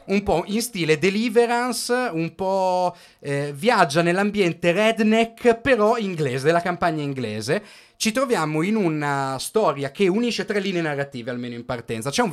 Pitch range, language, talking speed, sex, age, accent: 135-195 Hz, Italian, 150 wpm, male, 30-49, native